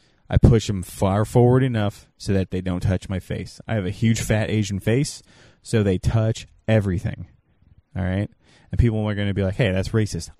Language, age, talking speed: English, 30-49, 210 wpm